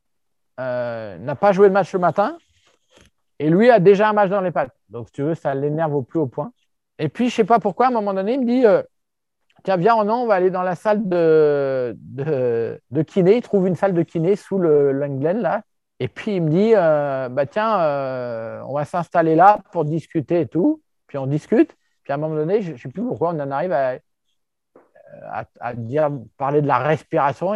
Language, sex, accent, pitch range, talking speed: French, male, French, 140-200 Hz, 225 wpm